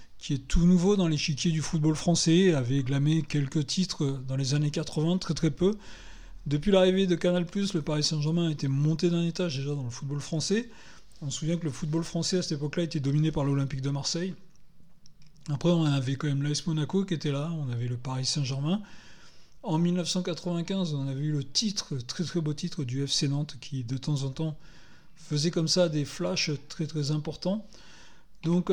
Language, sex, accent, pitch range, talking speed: French, male, French, 145-180 Hz, 200 wpm